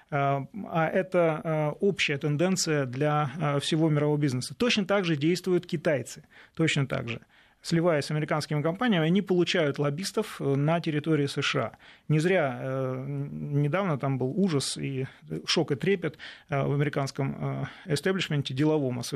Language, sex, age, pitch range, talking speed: Russian, male, 30-49, 140-180 Hz, 125 wpm